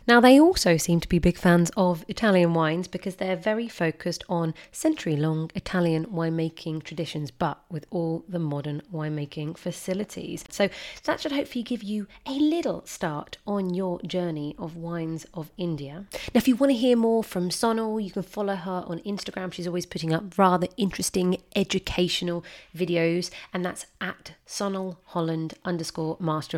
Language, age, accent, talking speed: English, 30-49, British, 165 wpm